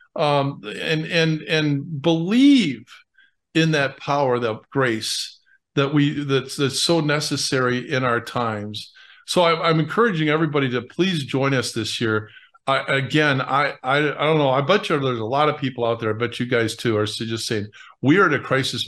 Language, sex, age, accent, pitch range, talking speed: English, male, 50-69, American, 115-155 Hz, 195 wpm